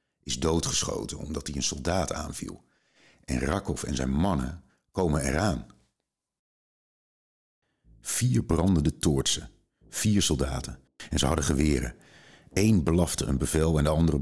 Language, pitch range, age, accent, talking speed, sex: Dutch, 70-85 Hz, 50-69, Dutch, 125 wpm, male